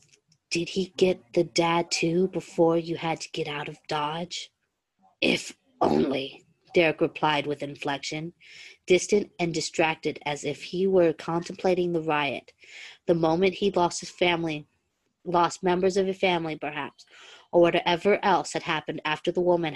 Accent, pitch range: American, 155-185 Hz